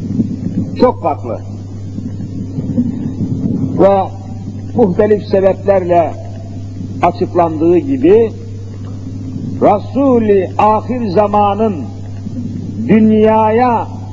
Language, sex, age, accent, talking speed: Turkish, male, 60-79, native, 45 wpm